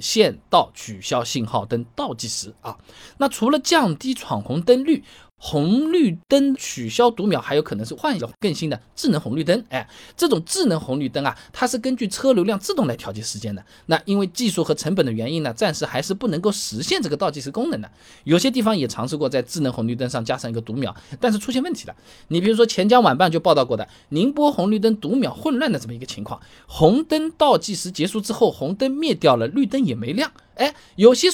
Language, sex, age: Chinese, male, 20-39